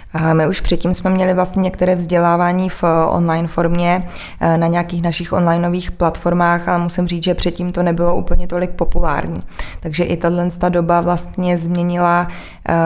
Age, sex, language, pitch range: 20-39, female, Czech, 170-180 Hz